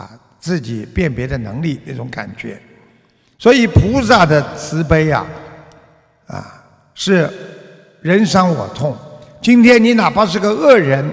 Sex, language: male, Chinese